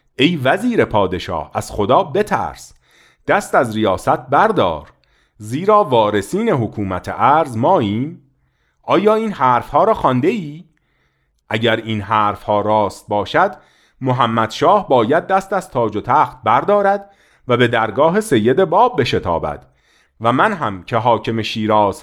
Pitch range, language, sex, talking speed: 100-160 Hz, Persian, male, 135 wpm